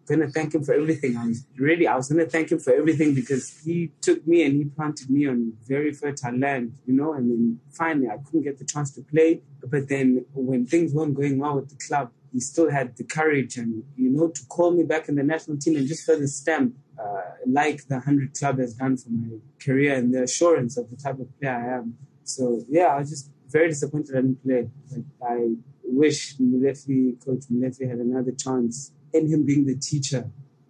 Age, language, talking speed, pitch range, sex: 20-39, English, 225 wpm, 125-145 Hz, male